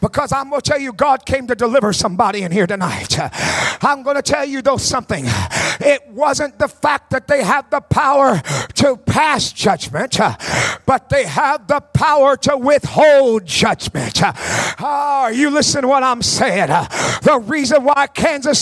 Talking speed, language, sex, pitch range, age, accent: 170 wpm, English, male, 280-320 Hz, 50-69, American